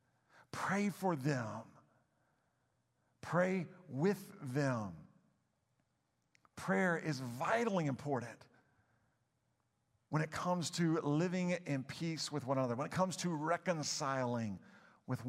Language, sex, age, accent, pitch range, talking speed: English, male, 50-69, American, 130-175 Hz, 100 wpm